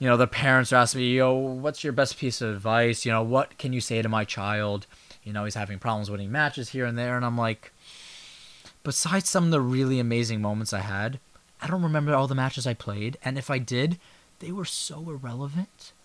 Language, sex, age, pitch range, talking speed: English, male, 20-39, 115-155 Hz, 230 wpm